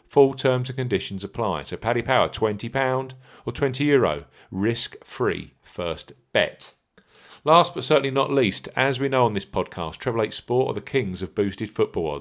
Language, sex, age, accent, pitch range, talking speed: English, male, 40-59, British, 95-135 Hz, 170 wpm